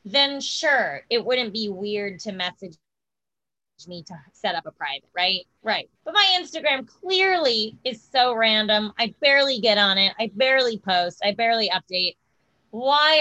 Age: 20-39